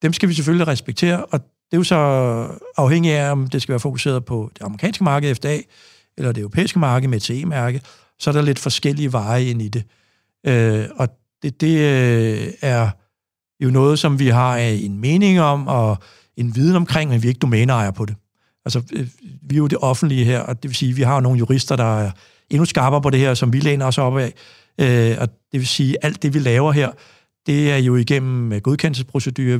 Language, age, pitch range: Danish, 60-79, 120-145 Hz